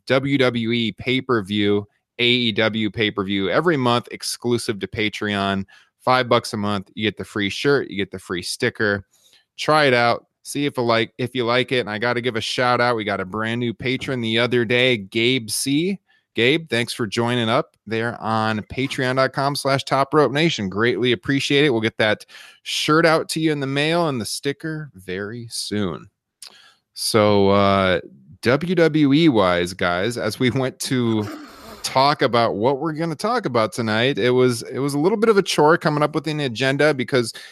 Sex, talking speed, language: male, 185 wpm, English